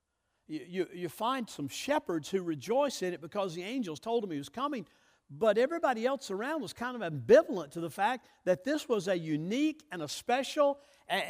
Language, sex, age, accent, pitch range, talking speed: English, male, 60-79, American, 180-265 Hz, 200 wpm